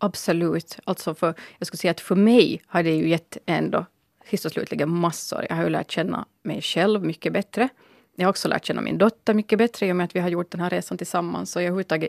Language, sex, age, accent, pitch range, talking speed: Finnish, female, 30-49, Swedish, 170-210 Hz, 240 wpm